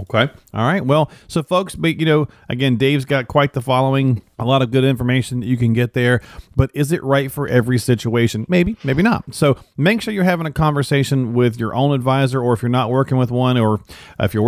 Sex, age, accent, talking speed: male, 40-59, American, 230 wpm